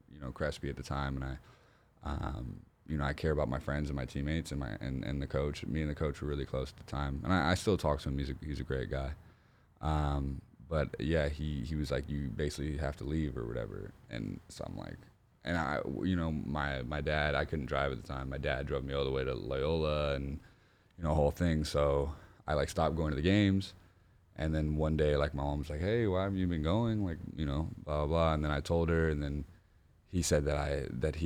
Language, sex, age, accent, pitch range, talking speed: English, male, 10-29, American, 70-85 Hz, 260 wpm